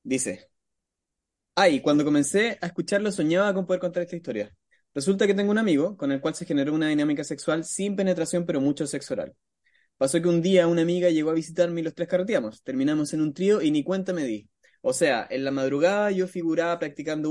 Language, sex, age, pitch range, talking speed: Spanish, male, 20-39, 135-175 Hz, 210 wpm